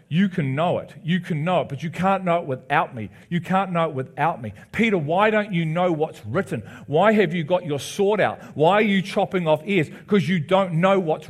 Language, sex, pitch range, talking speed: English, male, 160-210 Hz, 245 wpm